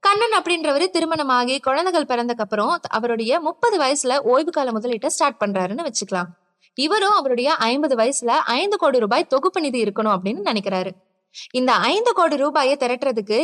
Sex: female